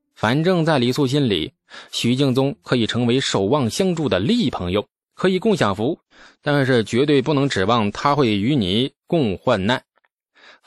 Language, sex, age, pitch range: Chinese, male, 20-39, 105-150 Hz